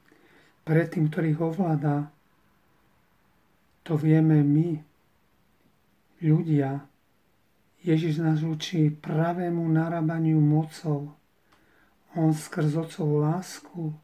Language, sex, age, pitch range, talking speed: Slovak, male, 40-59, 155-165 Hz, 80 wpm